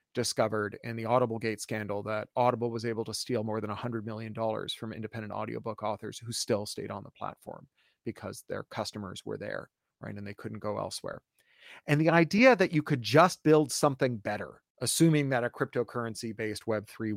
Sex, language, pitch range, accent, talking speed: male, English, 115-165 Hz, American, 195 wpm